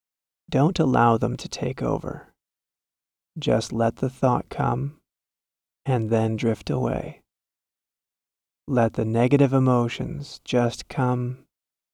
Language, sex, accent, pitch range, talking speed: English, male, American, 115-130 Hz, 105 wpm